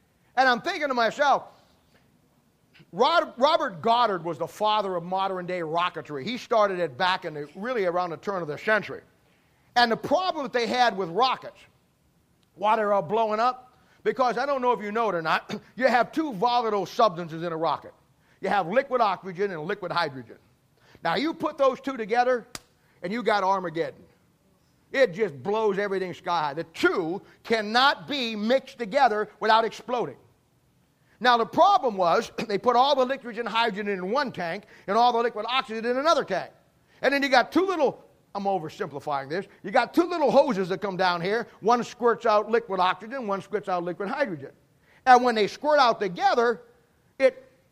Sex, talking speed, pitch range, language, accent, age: male, 180 wpm, 195-260 Hz, English, American, 40-59